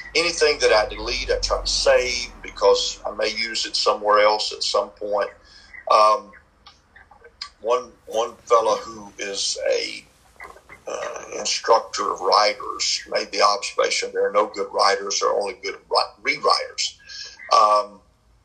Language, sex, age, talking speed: English, male, 50-69, 140 wpm